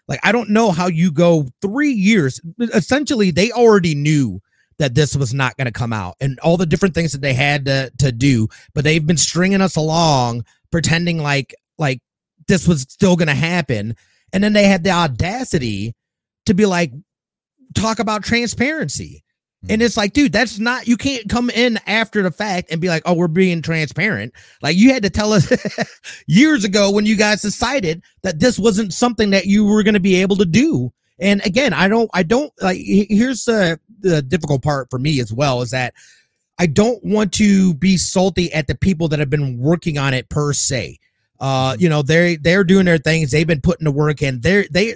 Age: 30-49